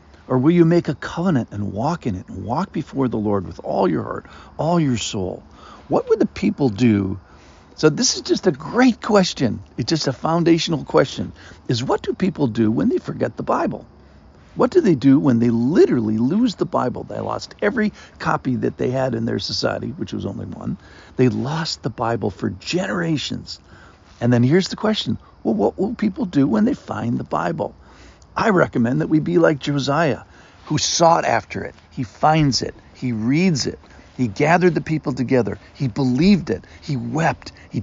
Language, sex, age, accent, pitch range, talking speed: English, male, 50-69, American, 105-160 Hz, 195 wpm